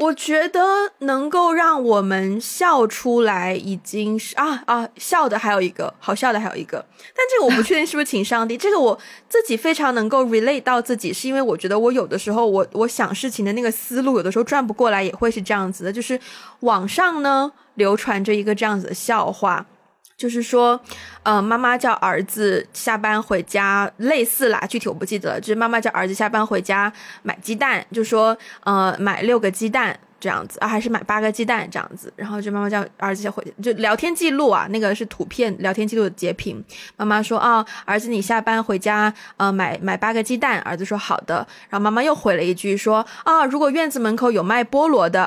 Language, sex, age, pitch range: Chinese, female, 20-39, 205-255 Hz